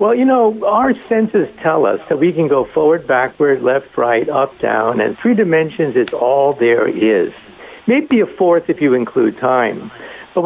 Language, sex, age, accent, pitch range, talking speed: English, male, 60-79, American, 165-225 Hz, 185 wpm